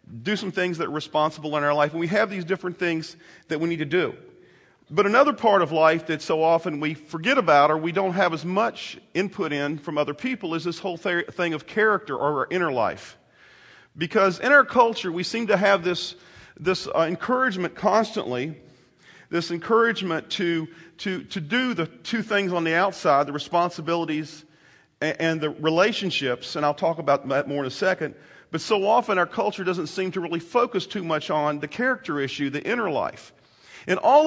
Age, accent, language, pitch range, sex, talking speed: 40-59, American, English, 160-210 Hz, male, 200 wpm